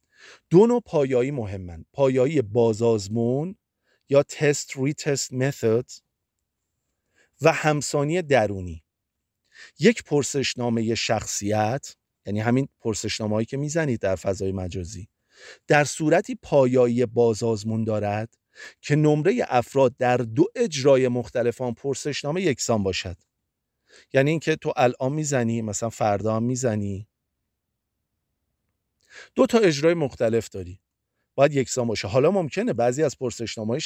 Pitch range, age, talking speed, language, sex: 105-145 Hz, 40-59, 110 wpm, Persian, male